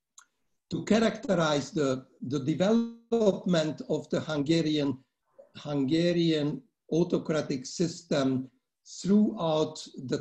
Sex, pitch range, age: male, 140-180 Hz, 60-79